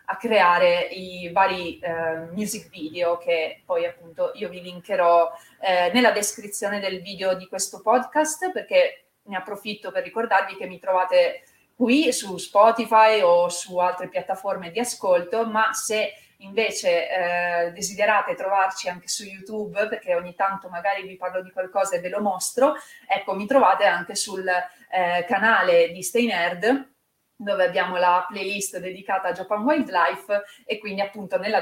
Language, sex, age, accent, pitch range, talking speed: Italian, female, 30-49, native, 180-235 Hz, 155 wpm